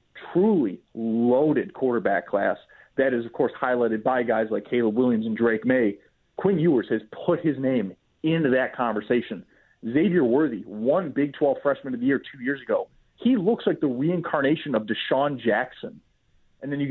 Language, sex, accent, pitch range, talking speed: English, male, American, 120-150 Hz, 175 wpm